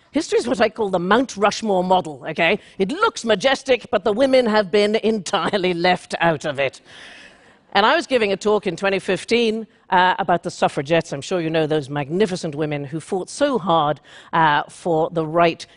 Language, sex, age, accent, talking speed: English, female, 50-69, British, 190 wpm